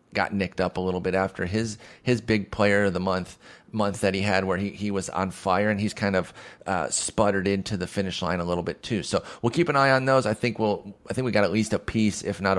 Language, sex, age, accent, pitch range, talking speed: English, male, 30-49, American, 95-115 Hz, 275 wpm